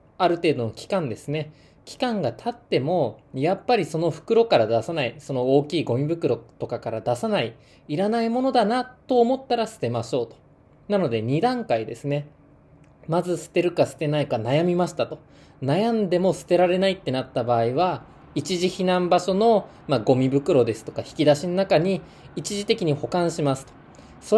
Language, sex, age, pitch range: Japanese, male, 20-39, 130-190 Hz